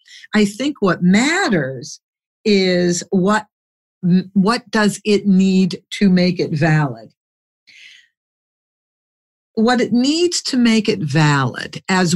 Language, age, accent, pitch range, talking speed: English, 50-69, American, 160-220 Hz, 110 wpm